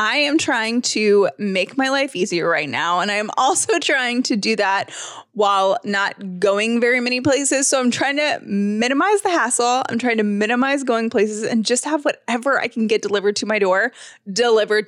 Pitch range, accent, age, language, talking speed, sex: 205-270 Hz, American, 20-39, English, 200 wpm, female